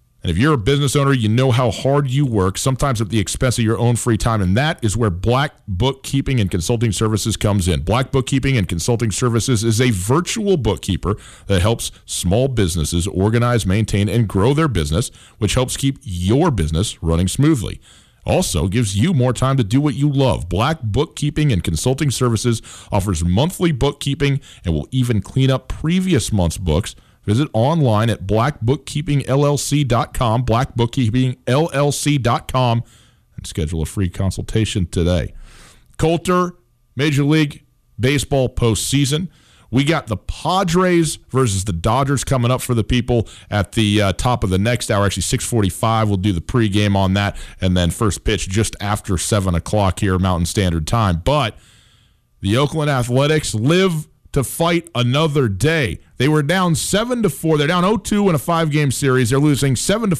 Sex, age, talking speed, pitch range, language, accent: male, 40-59, 165 wpm, 105-145 Hz, English, American